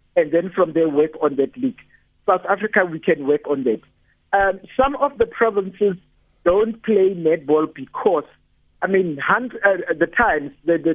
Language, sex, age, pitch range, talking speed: English, male, 50-69, 165-225 Hz, 175 wpm